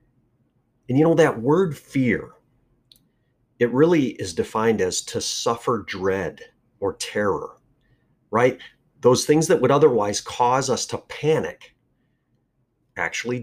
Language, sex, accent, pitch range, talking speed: English, male, American, 115-155 Hz, 120 wpm